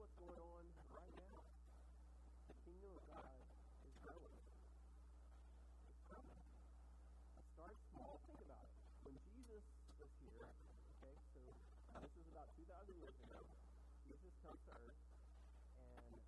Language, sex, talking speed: English, male, 135 wpm